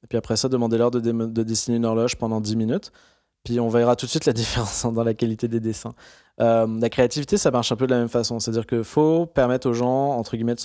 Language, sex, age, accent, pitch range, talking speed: French, male, 20-39, French, 115-130 Hz, 265 wpm